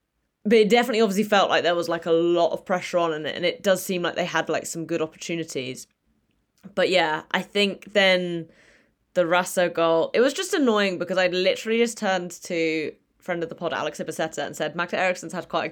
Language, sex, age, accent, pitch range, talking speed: English, female, 20-39, British, 165-205 Hz, 220 wpm